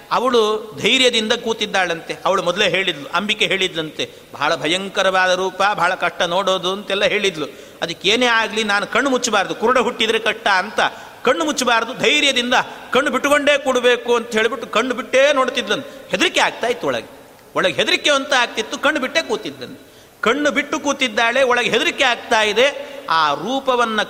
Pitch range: 195-255 Hz